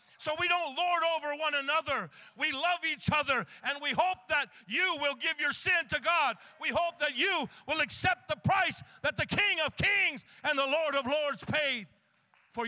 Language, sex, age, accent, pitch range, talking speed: English, male, 50-69, American, 195-295 Hz, 200 wpm